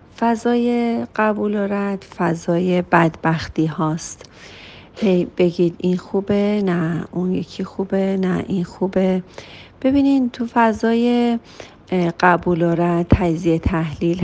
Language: Persian